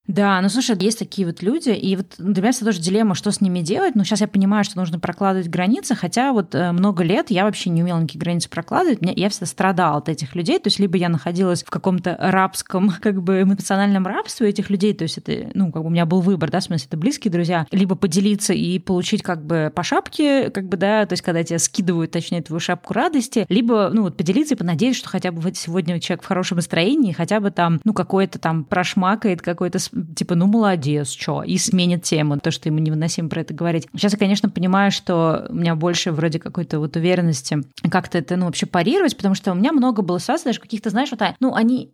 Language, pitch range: Russian, 175-210 Hz